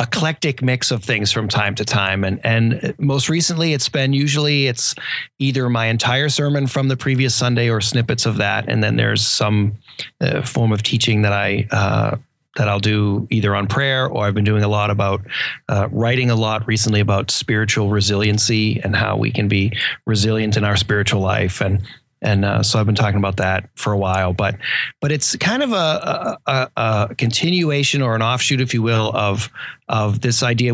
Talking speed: 195 wpm